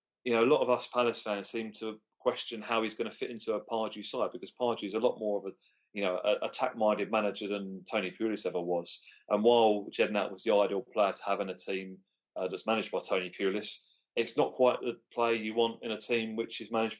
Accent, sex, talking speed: British, male, 235 wpm